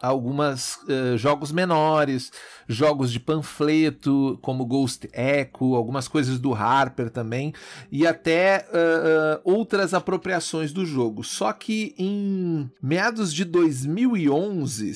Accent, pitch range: Brazilian, 130-170 Hz